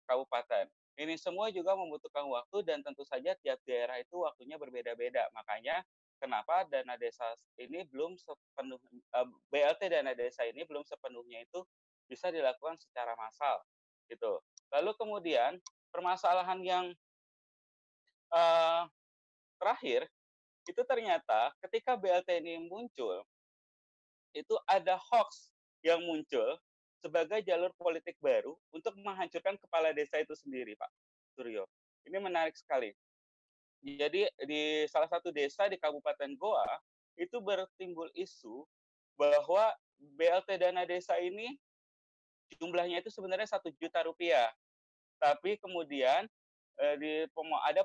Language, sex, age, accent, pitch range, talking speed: Indonesian, male, 30-49, native, 150-215 Hz, 115 wpm